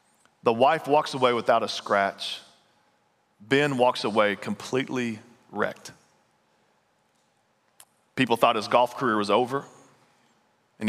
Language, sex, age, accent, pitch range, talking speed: English, male, 40-59, American, 120-160 Hz, 110 wpm